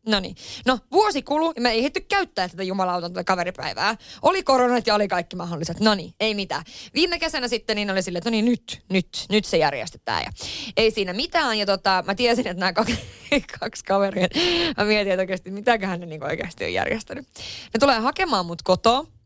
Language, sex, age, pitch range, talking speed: Finnish, female, 20-39, 185-250 Hz, 200 wpm